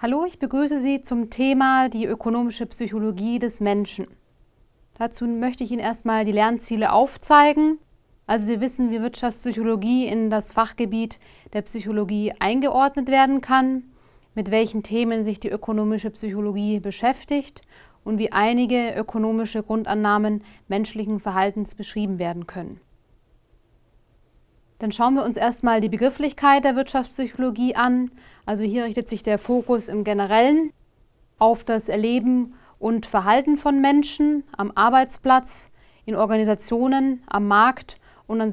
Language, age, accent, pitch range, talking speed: German, 30-49, German, 210-250 Hz, 130 wpm